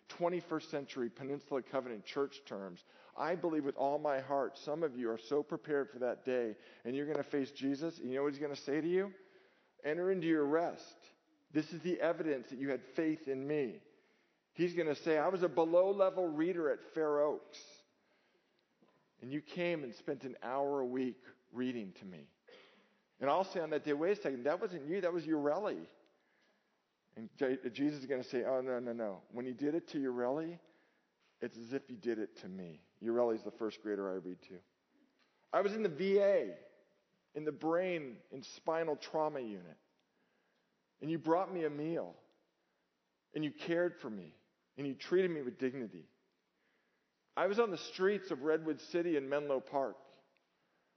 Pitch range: 130-170 Hz